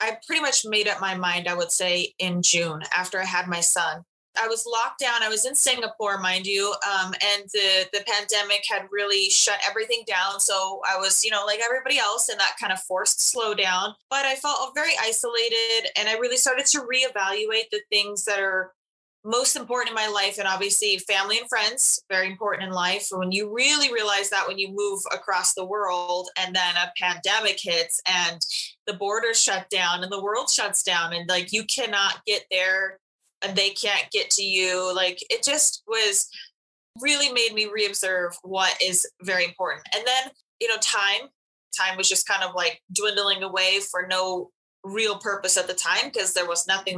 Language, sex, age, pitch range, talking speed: English, female, 20-39, 190-255 Hz, 200 wpm